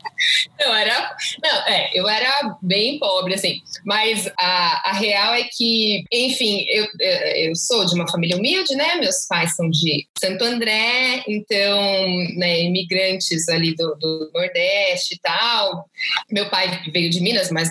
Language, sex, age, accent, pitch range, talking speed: Portuguese, female, 20-39, Brazilian, 180-255 Hz, 155 wpm